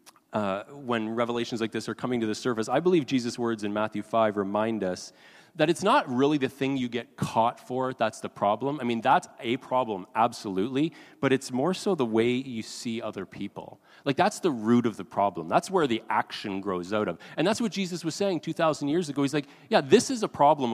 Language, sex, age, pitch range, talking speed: English, male, 30-49, 105-140 Hz, 225 wpm